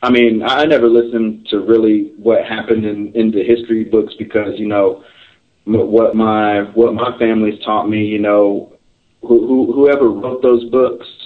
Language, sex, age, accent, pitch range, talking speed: English, male, 30-49, American, 105-120 Hz, 175 wpm